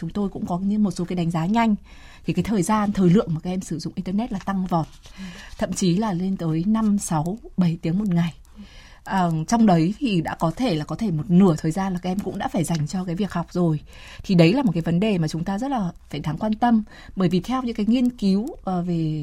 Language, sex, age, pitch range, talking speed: Vietnamese, female, 20-39, 170-220 Hz, 270 wpm